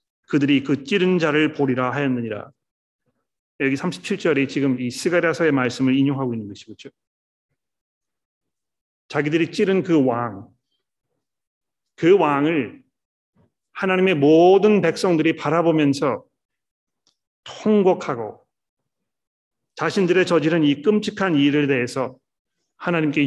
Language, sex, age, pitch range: Korean, male, 40-59, 135-165 Hz